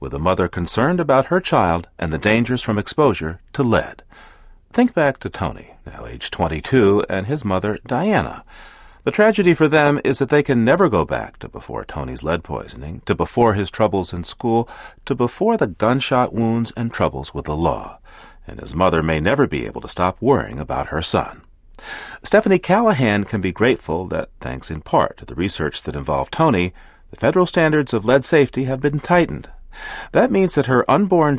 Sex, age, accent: male, 40-59, American